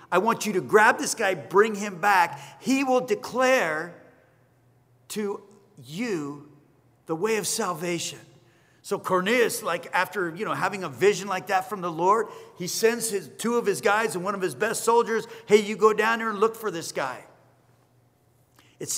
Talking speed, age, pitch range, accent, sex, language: 180 wpm, 40-59, 150-195 Hz, American, male, English